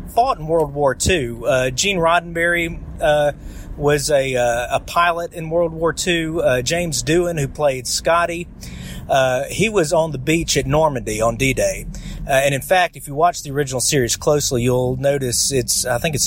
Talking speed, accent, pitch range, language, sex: 190 wpm, American, 125-155 Hz, English, male